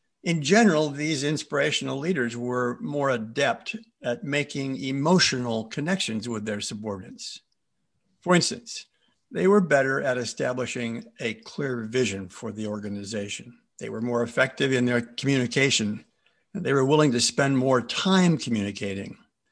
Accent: American